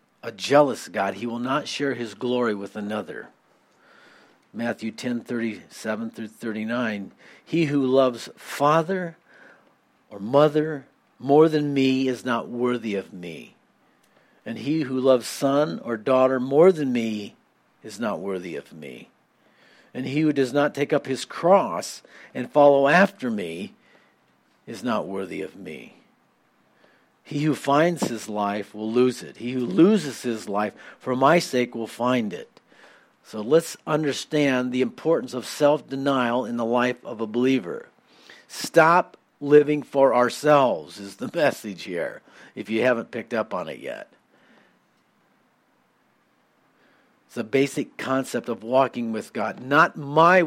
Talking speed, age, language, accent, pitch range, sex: 140 wpm, 50-69, English, American, 115-145 Hz, male